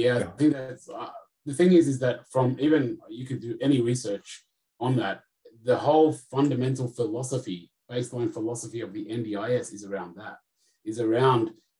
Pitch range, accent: 120-145 Hz, Australian